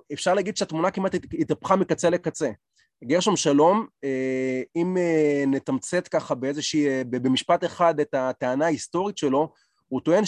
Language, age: Hebrew, 30-49